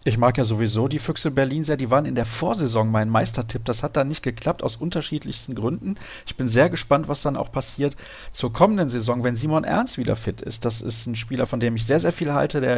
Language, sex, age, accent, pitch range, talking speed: German, male, 40-59, German, 115-140 Hz, 245 wpm